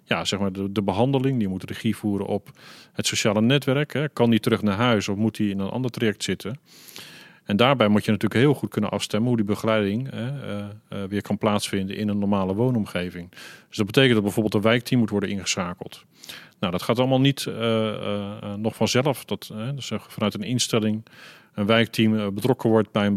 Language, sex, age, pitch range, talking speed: Dutch, male, 40-59, 100-120 Hz, 185 wpm